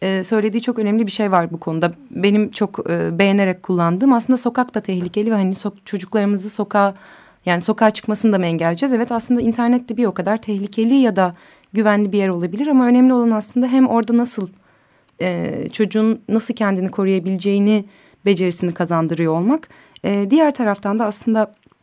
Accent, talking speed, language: native, 170 wpm, Turkish